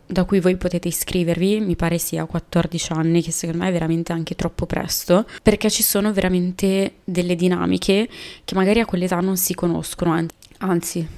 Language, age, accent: Italian, 20-39, native